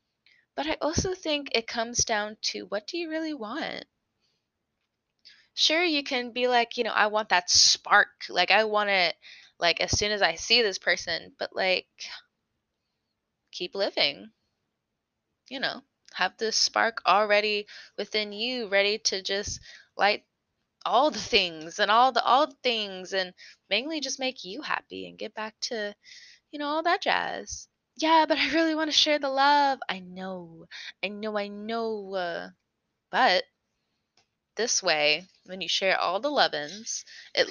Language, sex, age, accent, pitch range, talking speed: English, female, 20-39, American, 195-260 Hz, 165 wpm